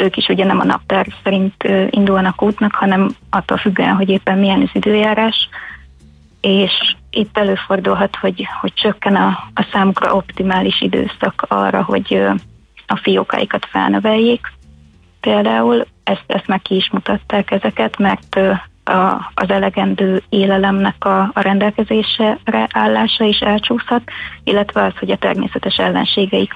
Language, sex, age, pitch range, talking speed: Hungarian, female, 30-49, 185-210 Hz, 130 wpm